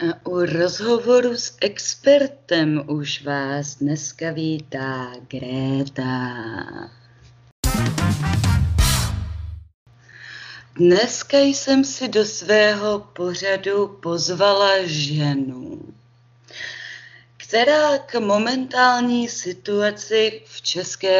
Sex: female